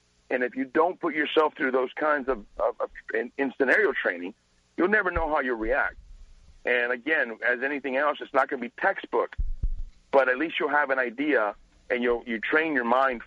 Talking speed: 210 wpm